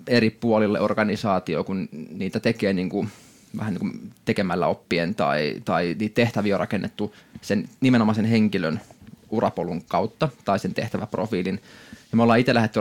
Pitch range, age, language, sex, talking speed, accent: 105-120 Hz, 20-39, Finnish, male, 145 wpm, native